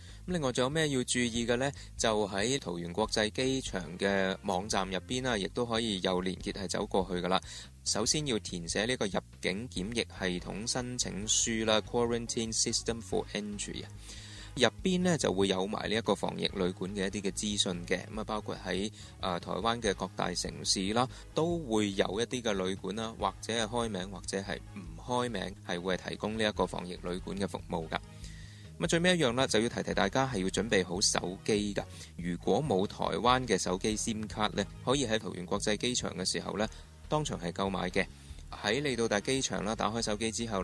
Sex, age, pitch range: male, 20-39, 95-115 Hz